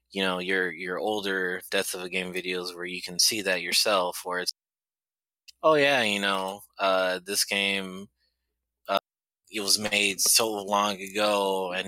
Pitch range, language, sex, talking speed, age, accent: 90-100 Hz, English, male, 165 wpm, 20-39, American